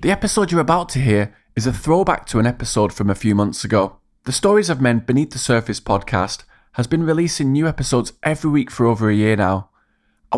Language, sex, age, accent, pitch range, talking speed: English, male, 20-39, British, 100-135 Hz, 220 wpm